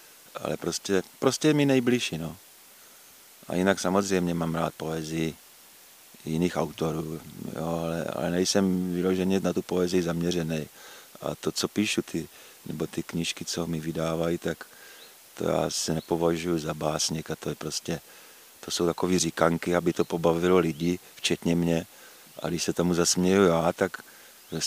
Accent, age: native, 50-69